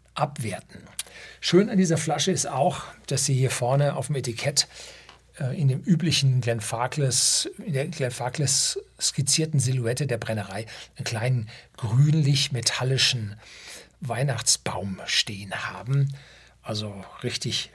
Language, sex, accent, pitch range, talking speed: German, male, German, 110-140 Hz, 115 wpm